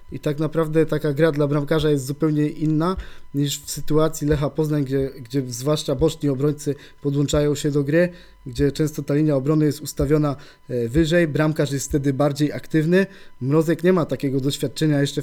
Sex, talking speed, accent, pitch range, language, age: male, 170 wpm, native, 145-160 Hz, Polish, 20-39